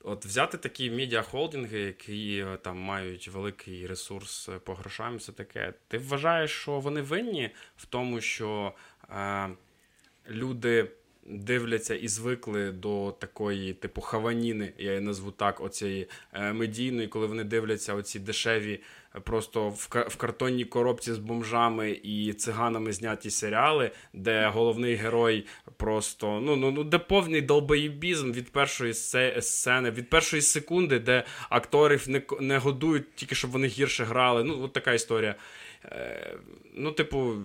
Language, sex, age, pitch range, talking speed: Ukrainian, male, 20-39, 105-130 Hz, 135 wpm